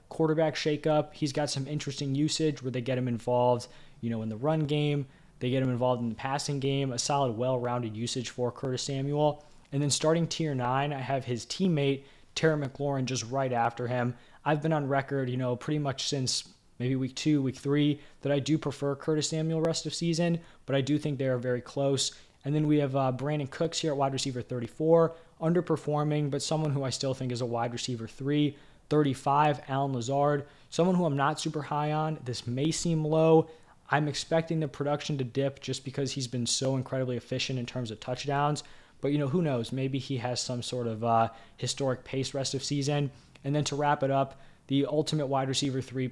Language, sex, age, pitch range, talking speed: English, male, 20-39, 125-150 Hz, 210 wpm